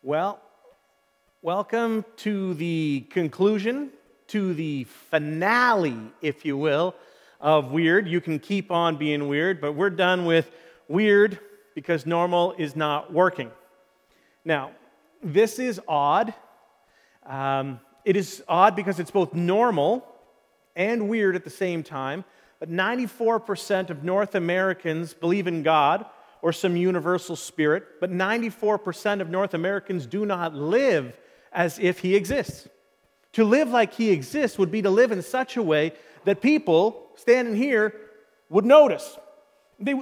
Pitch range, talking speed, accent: 170-240 Hz, 135 wpm, American